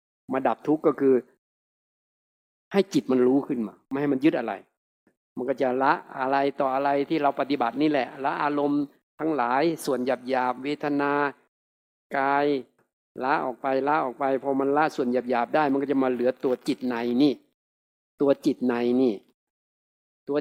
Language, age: Thai, 60-79